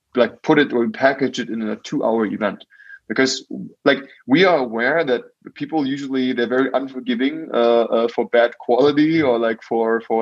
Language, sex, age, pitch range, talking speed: English, male, 20-39, 115-135 Hz, 175 wpm